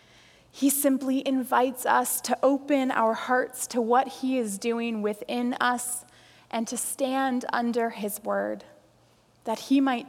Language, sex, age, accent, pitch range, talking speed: English, female, 20-39, American, 215-265 Hz, 145 wpm